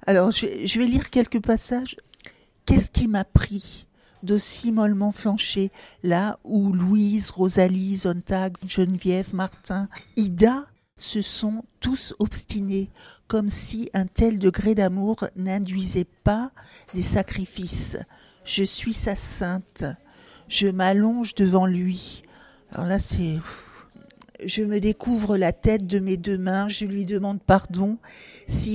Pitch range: 190-220 Hz